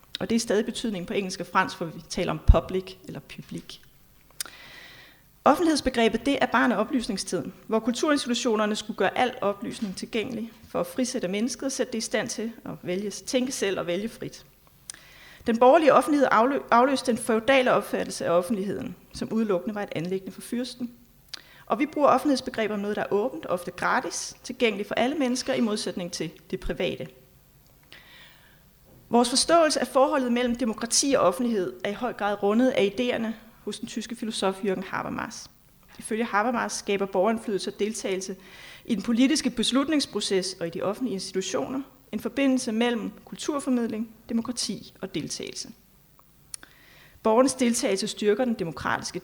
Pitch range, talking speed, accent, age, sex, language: 195-250 Hz, 160 wpm, native, 30-49, female, Danish